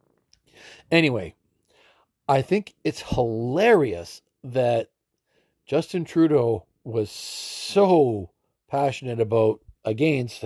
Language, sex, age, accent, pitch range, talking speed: English, male, 50-69, American, 110-140 Hz, 75 wpm